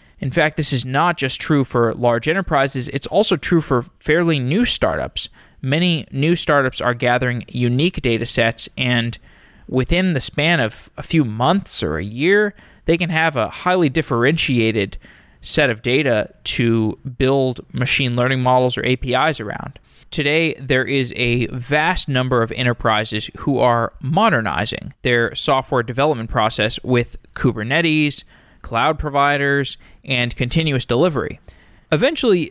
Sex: male